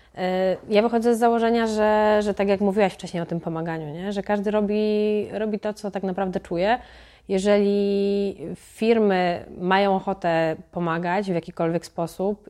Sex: female